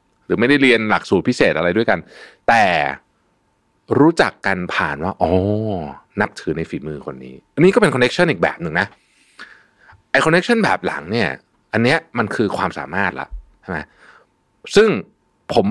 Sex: male